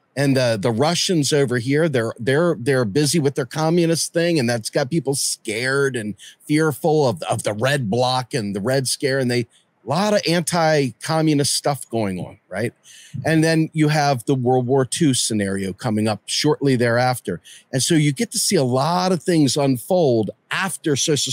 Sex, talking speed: male, 185 wpm